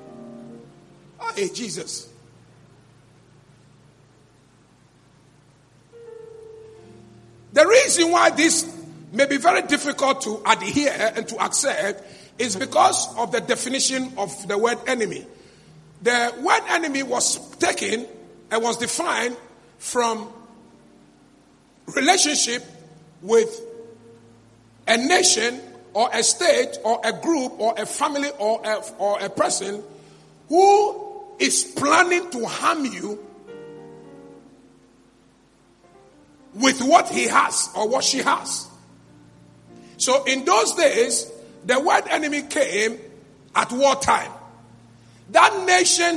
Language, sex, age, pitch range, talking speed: English, male, 50-69, 205-335 Hz, 100 wpm